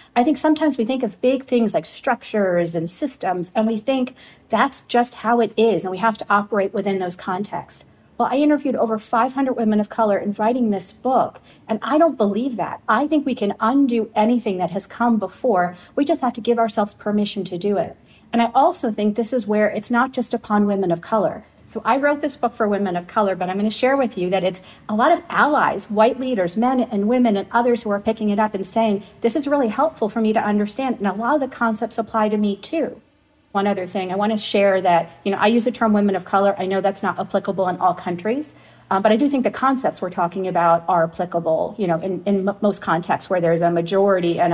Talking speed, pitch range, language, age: 245 wpm, 190-240 Hz, English, 40-59